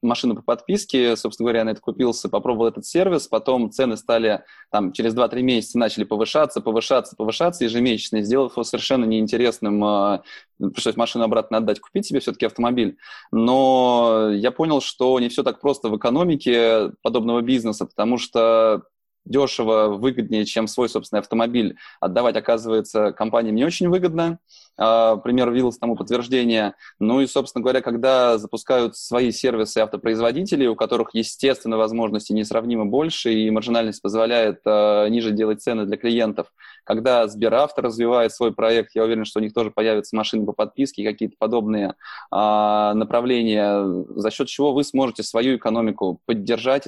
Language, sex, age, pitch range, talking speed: Russian, male, 20-39, 110-125 Hz, 150 wpm